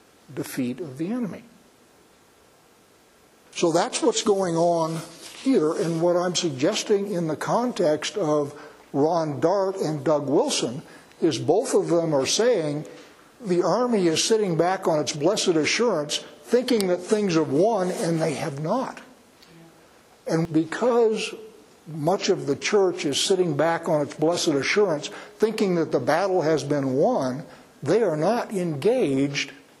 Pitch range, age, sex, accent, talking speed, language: 150-185 Hz, 60-79, male, American, 145 wpm, English